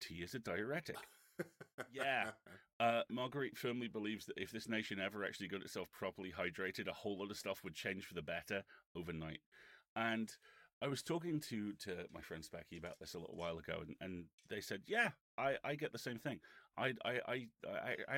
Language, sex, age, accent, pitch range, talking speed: English, male, 30-49, British, 90-115 Hz, 200 wpm